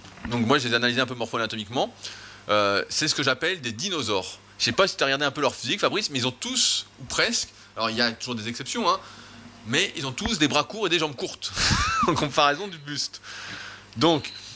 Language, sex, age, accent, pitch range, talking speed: French, male, 20-39, French, 110-150 Hz, 235 wpm